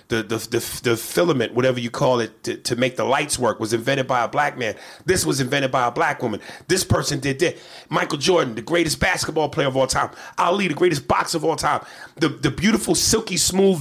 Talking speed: 230 wpm